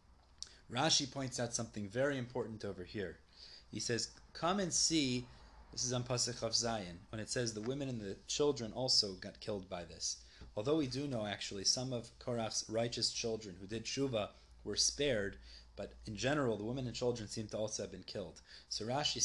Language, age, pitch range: English, 30-49, 100-130 Hz